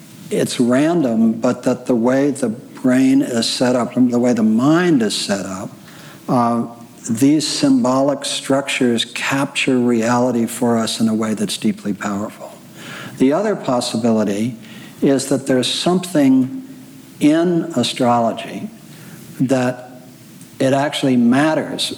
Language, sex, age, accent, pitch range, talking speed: English, male, 60-79, American, 120-140 Hz, 125 wpm